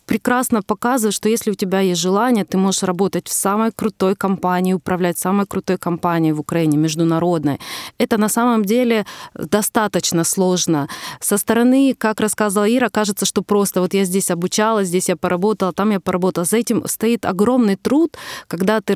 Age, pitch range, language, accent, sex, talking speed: 20-39, 175-210 Hz, Ukrainian, native, female, 170 wpm